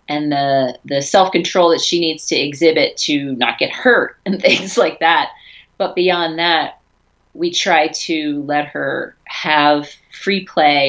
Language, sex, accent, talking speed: English, female, American, 160 wpm